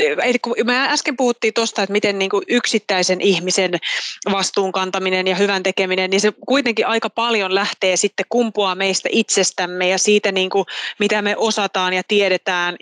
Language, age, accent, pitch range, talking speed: Finnish, 20-39, native, 185-205 Hz, 150 wpm